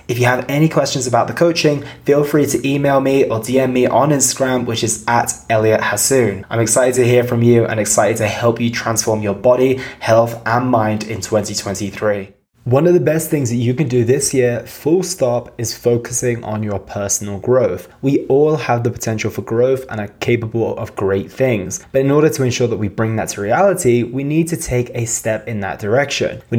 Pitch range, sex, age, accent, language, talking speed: 110-130 Hz, male, 20-39, British, English, 215 wpm